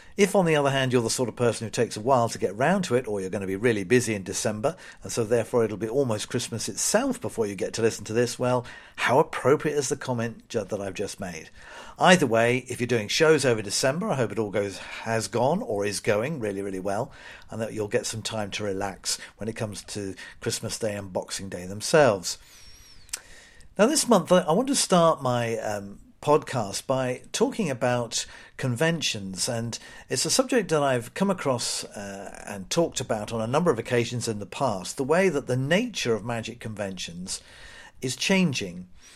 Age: 50-69